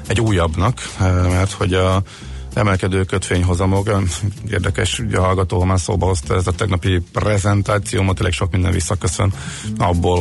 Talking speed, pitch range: 130 wpm, 90-105 Hz